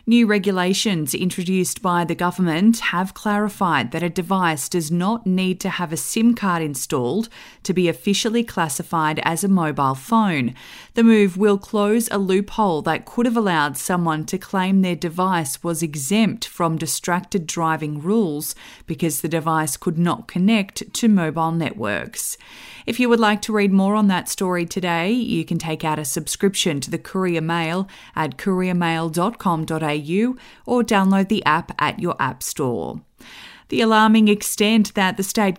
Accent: Australian